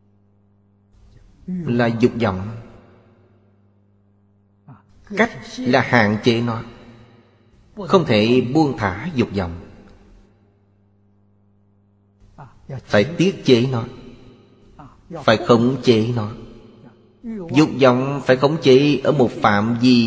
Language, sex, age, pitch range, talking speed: Vietnamese, male, 30-49, 100-130 Hz, 95 wpm